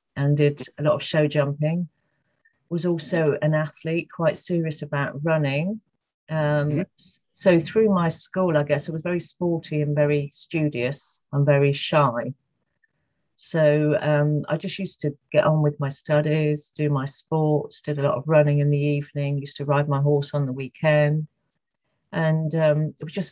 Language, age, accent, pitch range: English, 40-59, British, 140-155 Hz